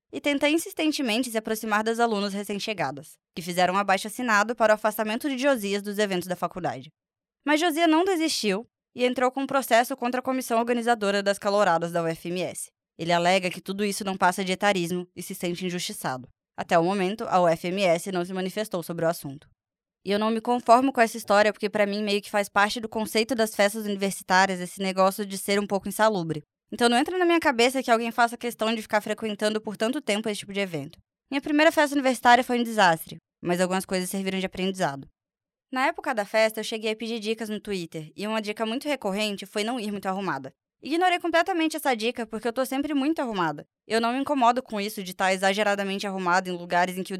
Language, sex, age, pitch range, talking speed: Portuguese, female, 10-29, 185-240 Hz, 215 wpm